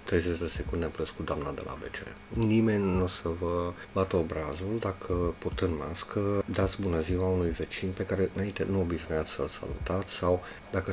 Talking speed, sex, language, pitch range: 175 wpm, male, Romanian, 85-100 Hz